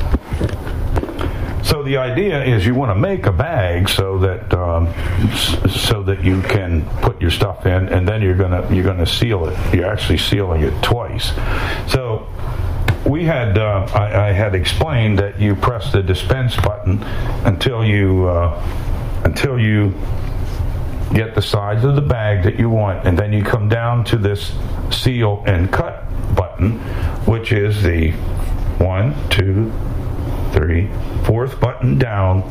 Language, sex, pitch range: English, male, 95-115 Hz